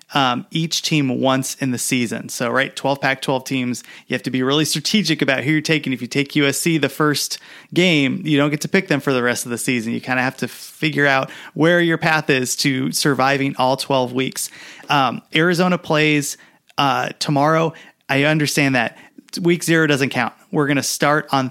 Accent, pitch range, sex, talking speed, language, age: American, 135-160 Hz, male, 205 wpm, English, 30-49